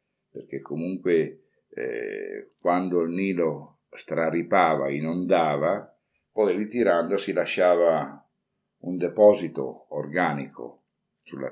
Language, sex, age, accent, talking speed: Italian, male, 60-79, native, 80 wpm